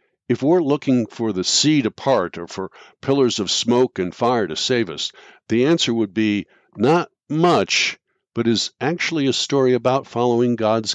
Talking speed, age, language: 175 wpm, 60-79, English